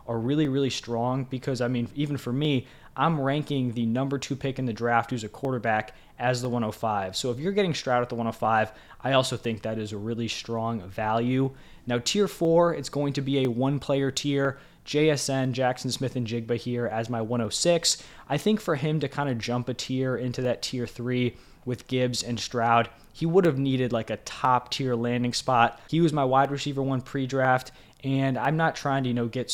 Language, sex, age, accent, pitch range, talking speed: English, male, 20-39, American, 115-135 Hz, 215 wpm